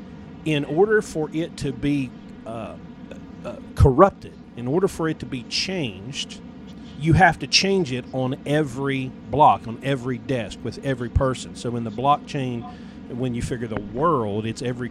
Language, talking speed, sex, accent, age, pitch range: English, 165 wpm, male, American, 40-59, 120-155 Hz